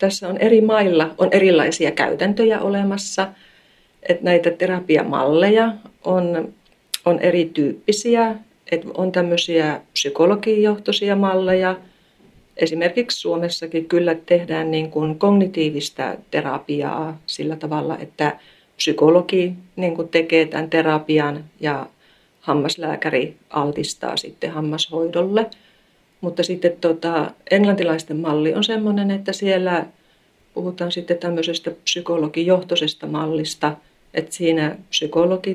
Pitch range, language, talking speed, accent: 160-185 Hz, Finnish, 95 wpm, native